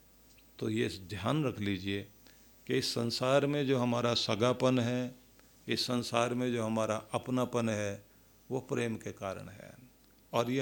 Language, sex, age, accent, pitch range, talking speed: Hindi, male, 50-69, native, 115-140 Hz, 155 wpm